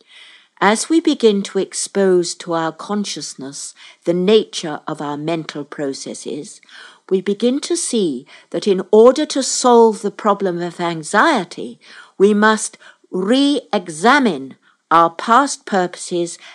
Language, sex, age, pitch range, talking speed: English, female, 60-79, 170-240 Hz, 120 wpm